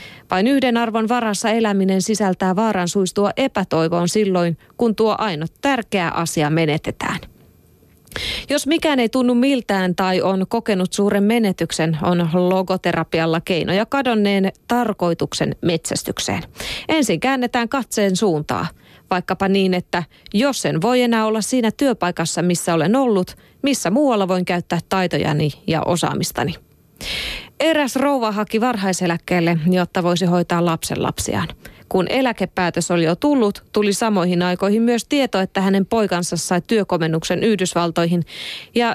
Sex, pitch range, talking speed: female, 175-230 Hz, 125 wpm